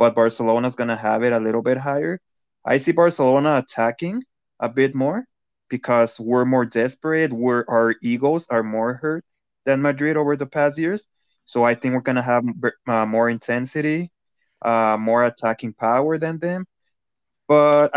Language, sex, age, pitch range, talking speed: English, male, 20-39, 115-140 Hz, 160 wpm